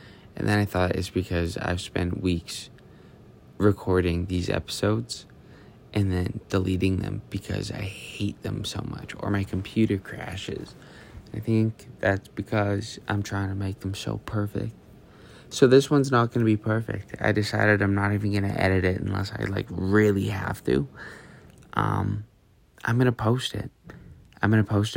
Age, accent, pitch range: 20-39, American, 95-110 Hz